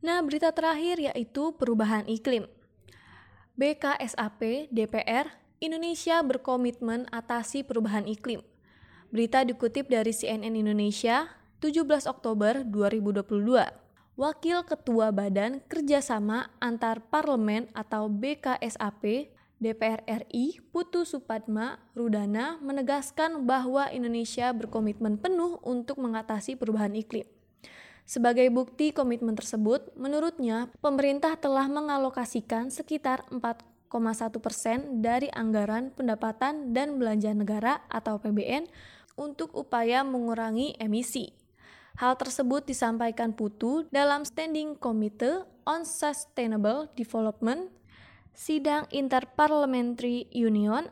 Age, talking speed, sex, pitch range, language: 20-39, 90 wpm, female, 225-285 Hz, Indonesian